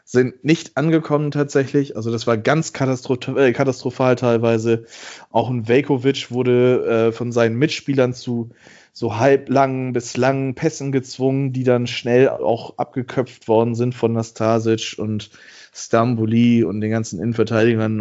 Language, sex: German, male